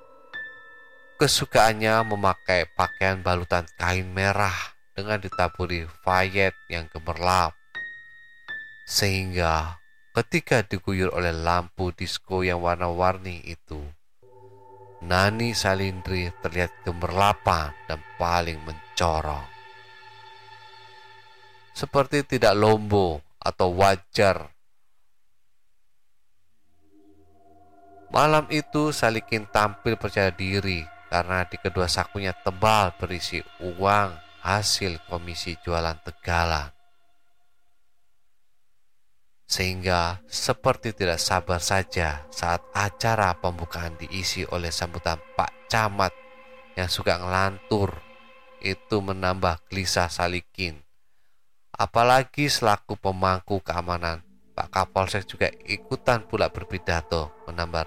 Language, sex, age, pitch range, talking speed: Indonesian, male, 30-49, 90-125 Hz, 85 wpm